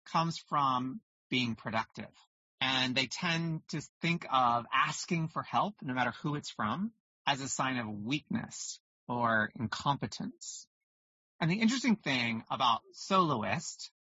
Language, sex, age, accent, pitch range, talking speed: English, male, 30-49, American, 130-180 Hz, 135 wpm